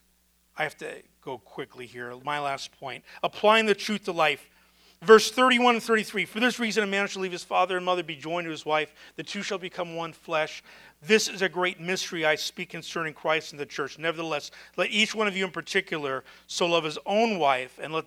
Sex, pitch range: male, 155-215 Hz